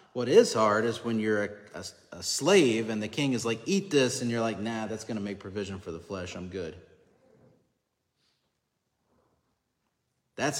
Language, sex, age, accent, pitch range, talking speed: English, male, 30-49, American, 100-125 Hz, 170 wpm